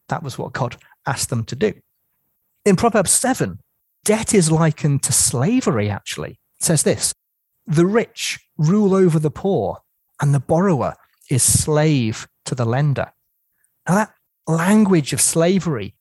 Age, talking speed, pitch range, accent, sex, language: 30-49, 145 wpm, 135-185 Hz, British, male, English